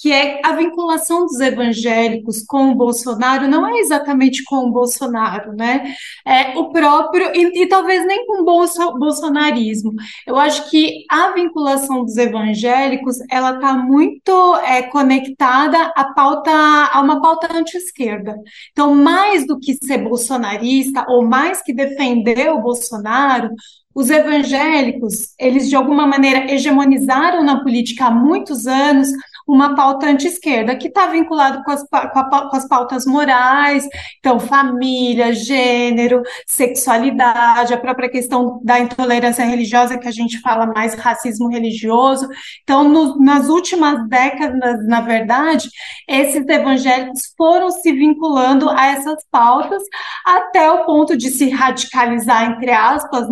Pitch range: 245-300 Hz